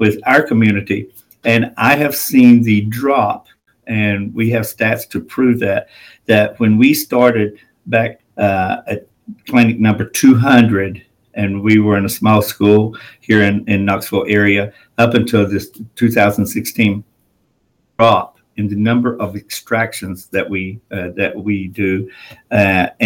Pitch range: 100-115 Hz